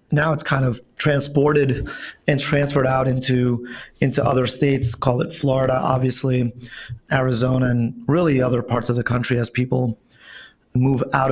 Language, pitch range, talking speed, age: English, 125-145 Hz, 150 wpm, 30-49